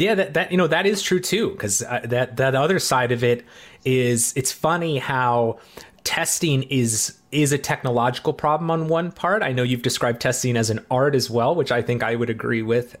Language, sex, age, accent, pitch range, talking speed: English, male, 30-49, American, 120-145 Hz, 215 wpm